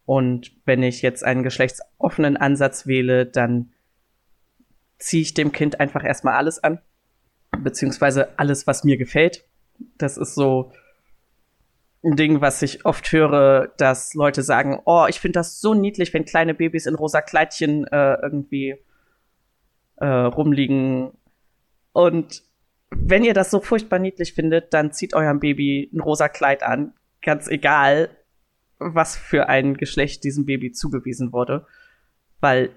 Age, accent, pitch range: 20-39, German, 140-165 Hz